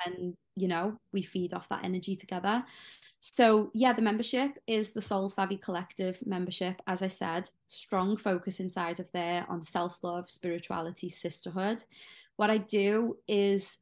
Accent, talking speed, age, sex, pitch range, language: British, 150 wpm, 20-39, female, 175-200 Hz, English